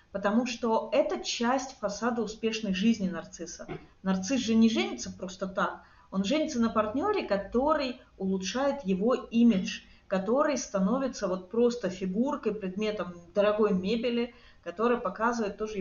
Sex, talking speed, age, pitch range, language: female, 125 wpm, 30-49, 200-245 Hz, Russian